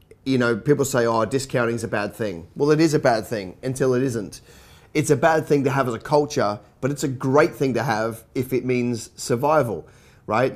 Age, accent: 30-49, Australian